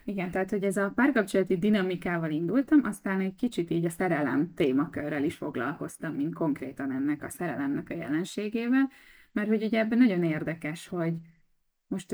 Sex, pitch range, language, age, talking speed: female, 165-230 Hz, Hungarian, 20-39, 160 wpm